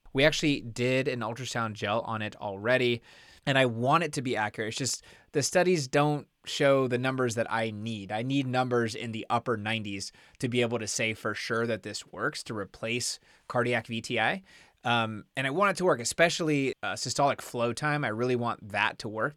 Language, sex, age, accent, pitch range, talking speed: English, male, 20-39, American, 110-135 Hz, 205 wpm